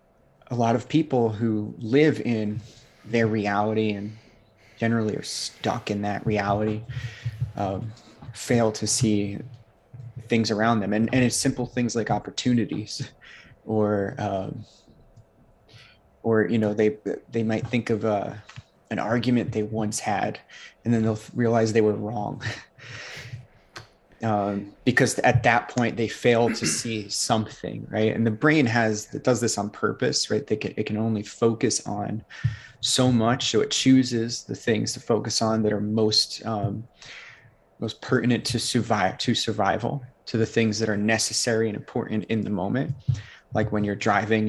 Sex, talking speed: male, 155 wpm